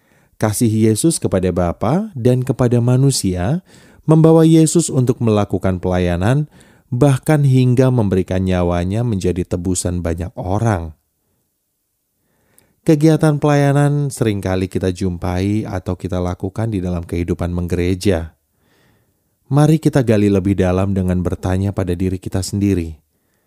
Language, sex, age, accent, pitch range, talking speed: Indonesian, male, 30-49, native, 90-130 Hz, 110 wpm